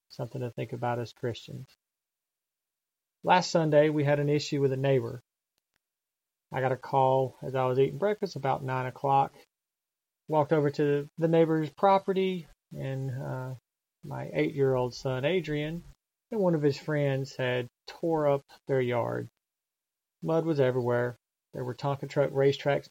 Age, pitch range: 30-49, 130-150 Hz